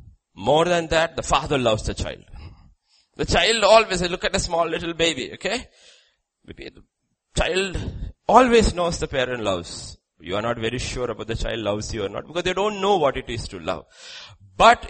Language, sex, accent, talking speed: English, male, Indian, 195 wpm